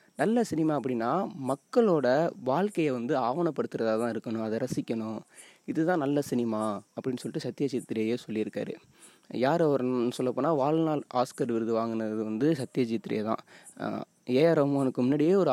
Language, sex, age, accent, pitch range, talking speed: Tamil, male, 20-39, native, 120-160 Hz, 115 wpm